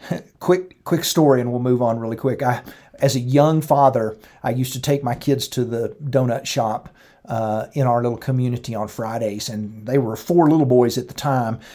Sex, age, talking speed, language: male, 40-59, 205 wpm, English